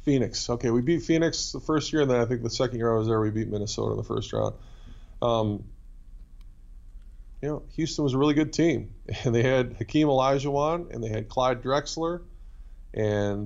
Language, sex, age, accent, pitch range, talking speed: English, male, 20-39, American, 105-120 Hz, 200 wpm